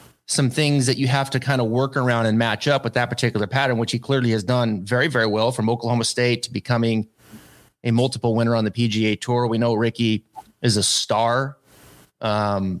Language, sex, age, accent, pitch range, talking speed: English, male, 30-49, American, 110-140 Hz, 205 wpm